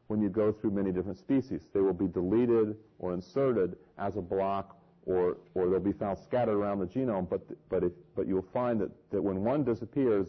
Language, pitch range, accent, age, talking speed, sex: English, 90-115 Hz, American, 40-59, 210 wpm, male